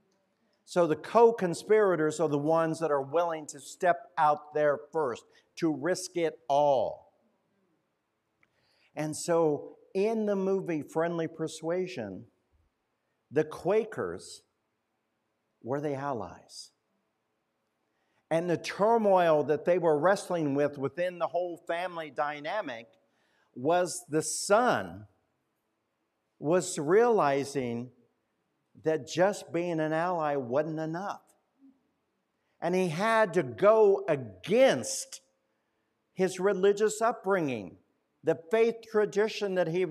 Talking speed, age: 105 wpm, 60-79